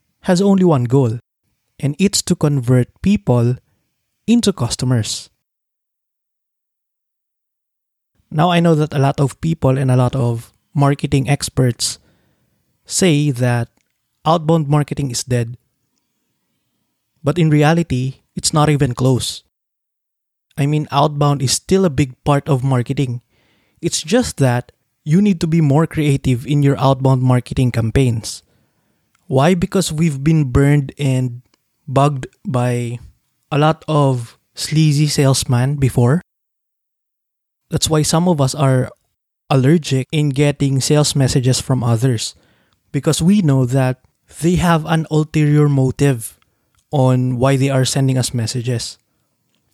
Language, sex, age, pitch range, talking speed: English, male, 20-39, 125-150 Hz, 125 wpm